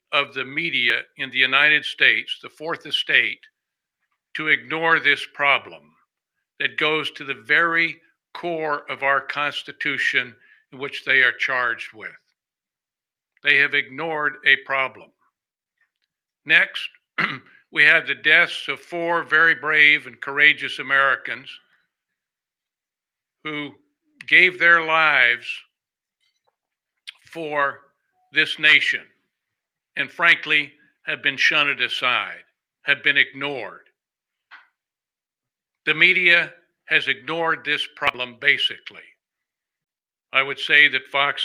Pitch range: 135-165 Hz